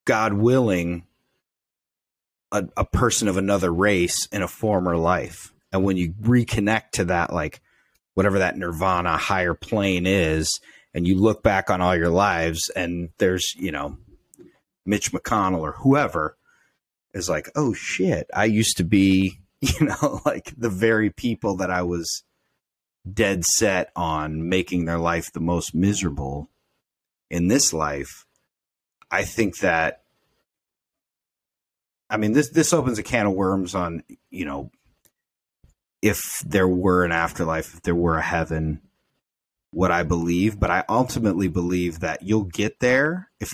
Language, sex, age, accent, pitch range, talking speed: English, male, 30-49, American, 85-110 Hz, 145 wpm